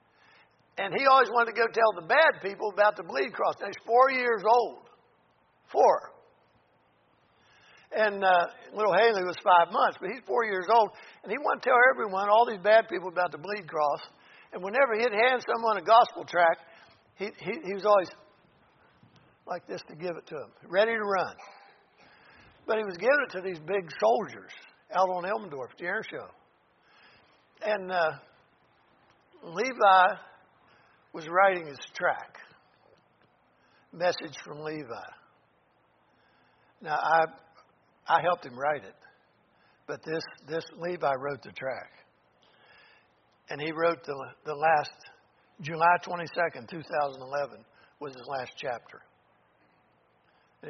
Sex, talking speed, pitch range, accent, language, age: male, 145 wpm, 170-230 Hz, American, English, 60-79